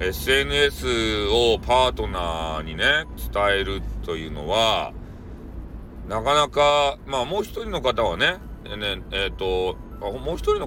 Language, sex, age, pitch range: Japanese, male, 40-59, 95-135 Hz